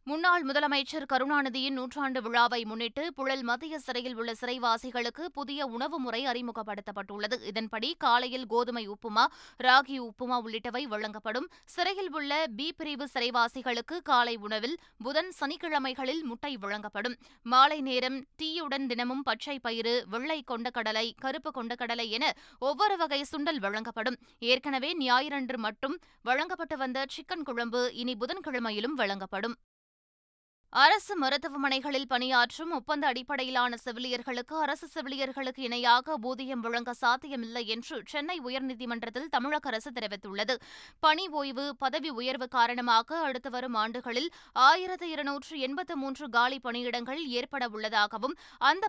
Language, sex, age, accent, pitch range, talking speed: Tamil, female, 20-39, native, 240-290 Hz, 110 wpm